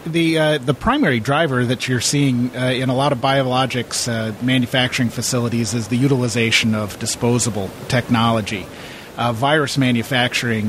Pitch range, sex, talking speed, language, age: 115-135 Hz, male, 145 wpm, English, 40-59